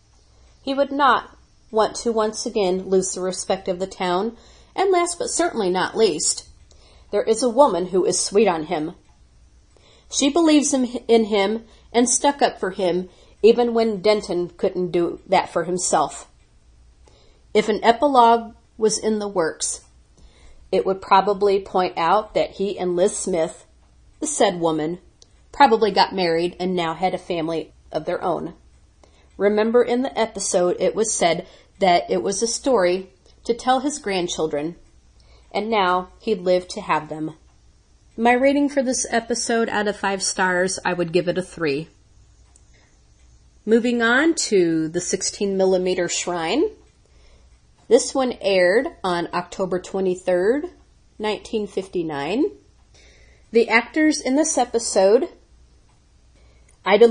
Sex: female